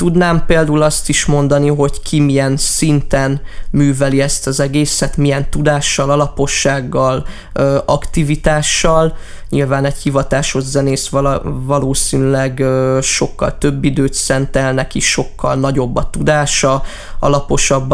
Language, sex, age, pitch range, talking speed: Hungarian, male, 20-39, 135-145 Hz, 110 wpm